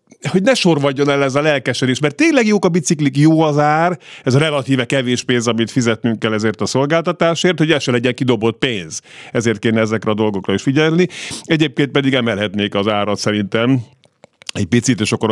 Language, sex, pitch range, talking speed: Hungarian, male, 110-150 Hz, 190 wpm